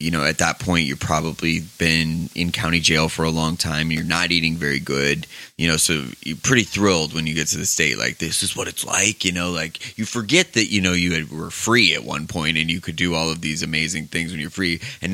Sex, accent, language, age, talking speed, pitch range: male, American, English, 20-39, 260 wpm, 80-105 Hz